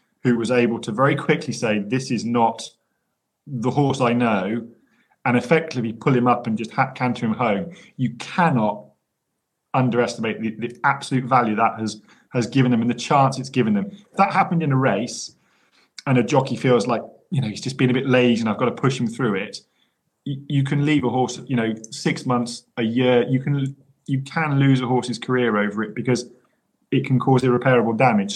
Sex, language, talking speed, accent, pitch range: male, English, 205 wpm, British, 120-145 Hz